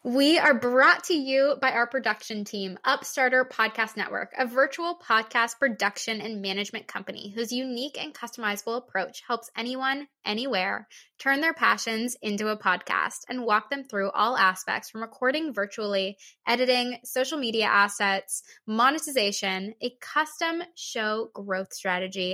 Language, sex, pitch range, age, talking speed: English, female, 205-270 Hz, 10-29, 140 wpm